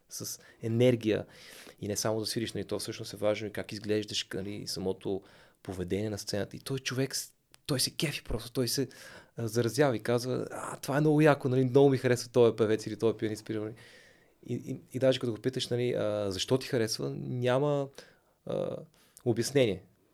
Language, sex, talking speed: Bulgarian, male, 180 wpm